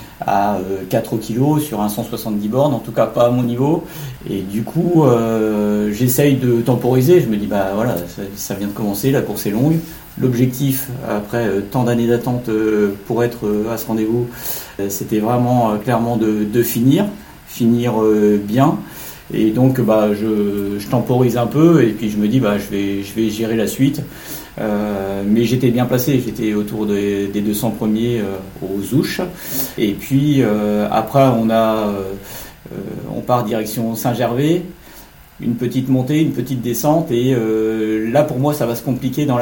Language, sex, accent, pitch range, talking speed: French, male, French, 105-130 Hz, 175 wpm